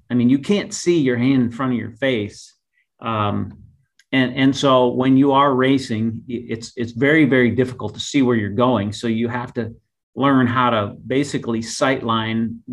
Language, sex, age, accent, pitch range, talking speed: English, male, 40-59, American, 110-125 Hz, 185 wpm